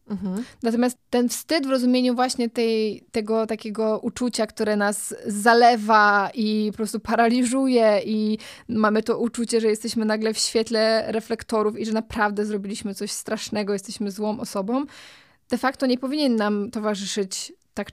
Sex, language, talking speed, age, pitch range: female, Polish, 140 wpm, 20-39, 210-250 Hz